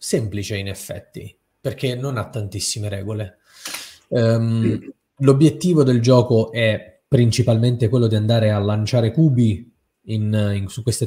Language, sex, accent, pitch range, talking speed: Italian, male, native, 105-135 Hz, 115 wpm